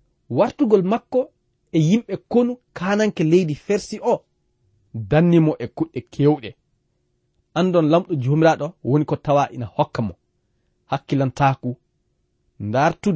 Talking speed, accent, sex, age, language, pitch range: 110 wpm, South African, male, 40-59, English, 125-195 Hz